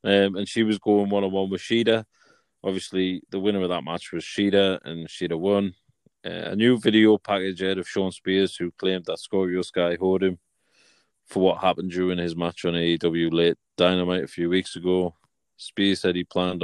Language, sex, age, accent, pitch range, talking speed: English, male, 20-39, British, 90-105 Hz, 200 wpm